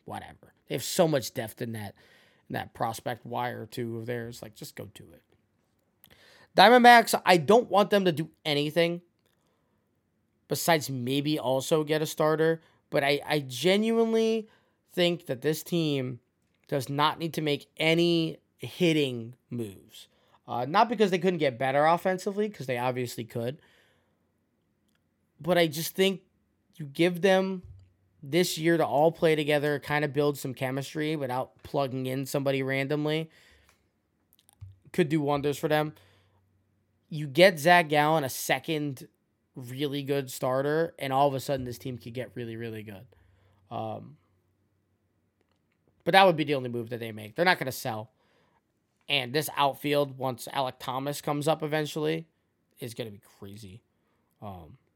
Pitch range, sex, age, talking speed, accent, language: 115-160 Hz, male, 20-39, 155 wpm, American, English